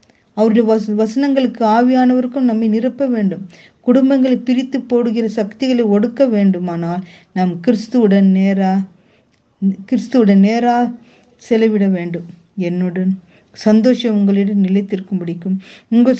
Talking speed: 80 wpm